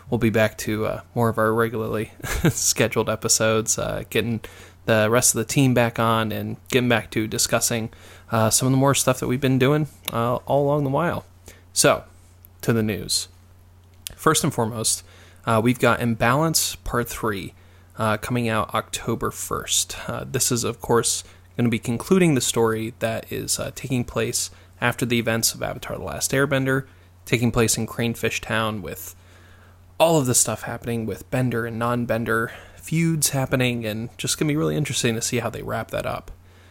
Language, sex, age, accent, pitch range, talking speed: English, male, 20-39, American, 100-125 Hz, 185 wpm